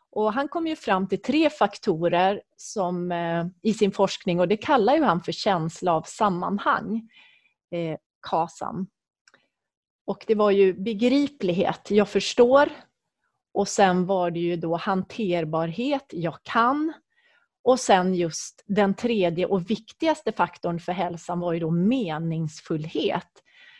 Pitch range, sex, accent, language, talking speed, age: 180-245 Hz, female, Swedish, English, 135 wpm, 30-49